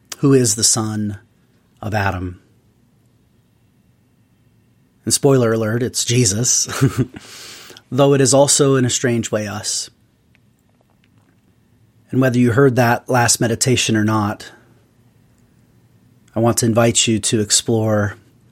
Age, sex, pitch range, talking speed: 30-49, male, 110-125 Hz, 115 wpm